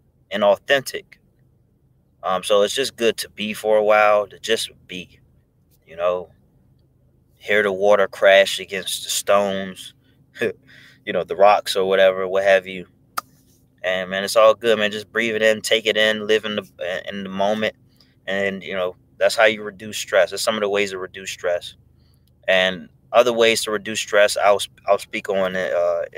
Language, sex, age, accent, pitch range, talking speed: English, male, 20-39, American, 95-115 Hz, 185 wpm